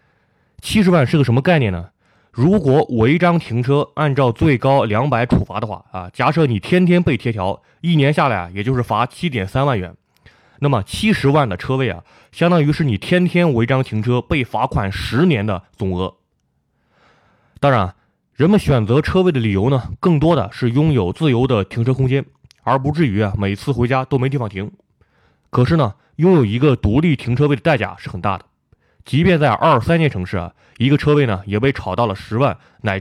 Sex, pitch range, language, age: male, 105-145 Hz, Chinese, 20-39